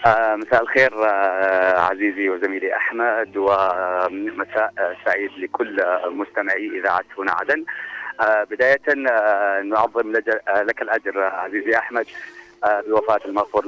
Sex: male